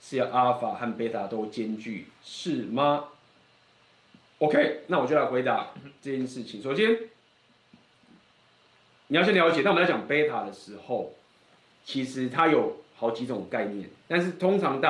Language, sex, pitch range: Chinese, male, 115-150 Hz